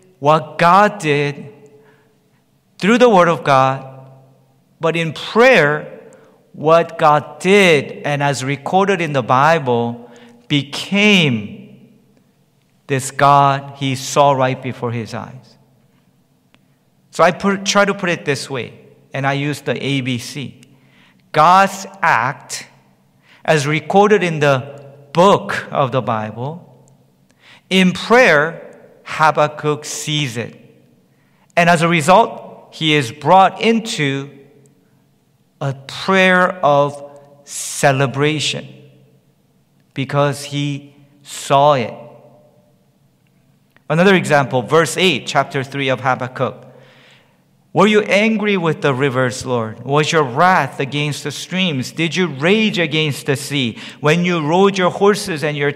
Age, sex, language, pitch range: 50-69, male, English, 135-170 Hz